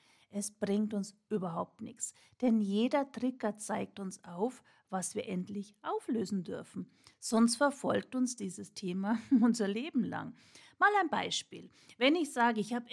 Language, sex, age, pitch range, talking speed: German, female, 40-59, 195-250 Hz, 150 wpm